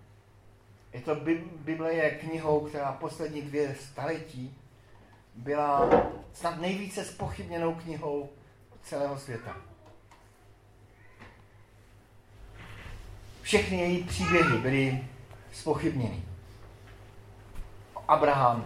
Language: Czech